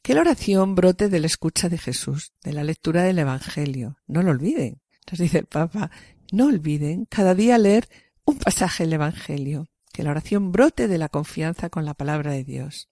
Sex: female